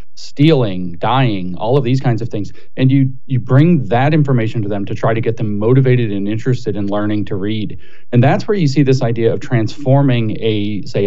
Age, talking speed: 30-49, 210 wpm